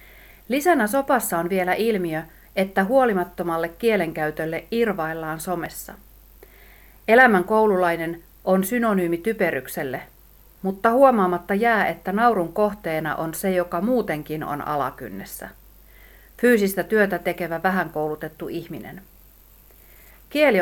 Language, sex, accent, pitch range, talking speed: Finnish, female, native, 165-215 Hz, 95 wpm